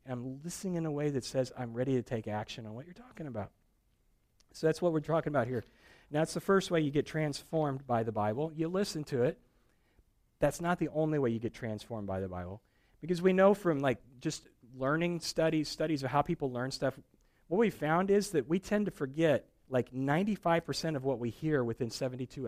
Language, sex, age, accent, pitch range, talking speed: English, male, 40-59, American, 125-175 Hz, 220 wpm